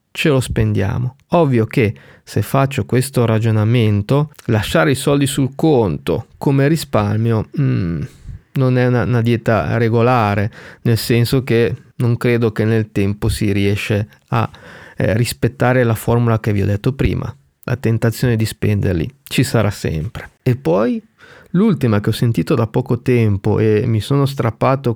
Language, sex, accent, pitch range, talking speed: Italian, male, native, 110-135 Hz, 150 wpm